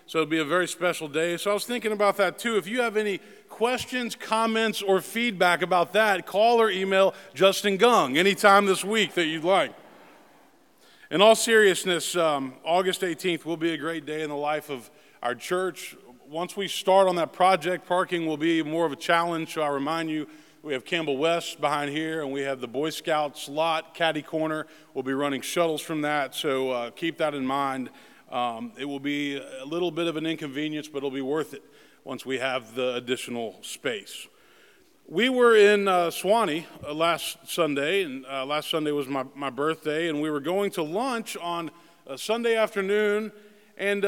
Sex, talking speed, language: male, 195 wpm, English